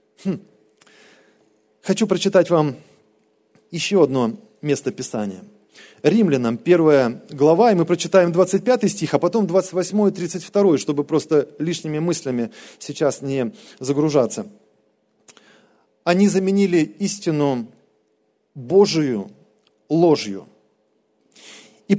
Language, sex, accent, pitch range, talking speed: Russian, male, native, 130-195 Hz, 90 wpm